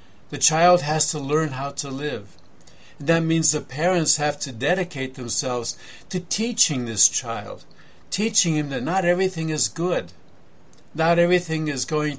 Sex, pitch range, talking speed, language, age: male, 125-155 Hz, 160 wpm, English, 50-69